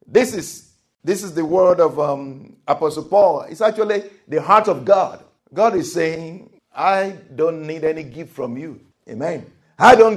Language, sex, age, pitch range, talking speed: English, male, 50-69, 180-255 Hz, 170 wpm